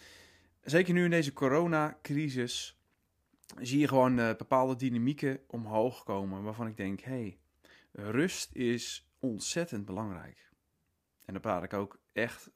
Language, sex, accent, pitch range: Dutch, male, Dutch, 95-145 Hz